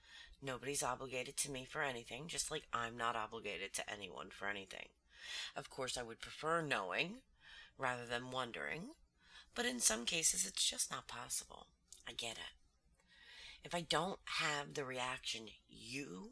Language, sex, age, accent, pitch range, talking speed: English, female, 30-49, American, 110-150 Hz, 155 wpm